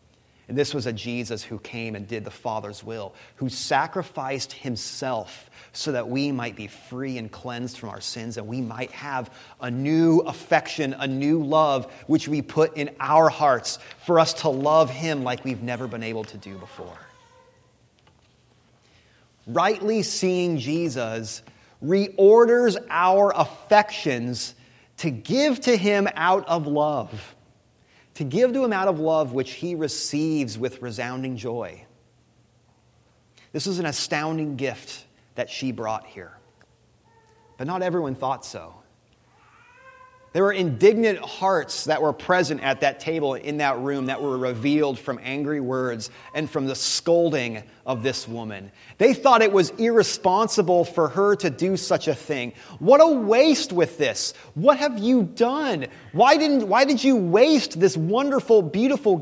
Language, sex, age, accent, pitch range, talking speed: English, male, 30-49, American, 125-200 Hz, 155 wpm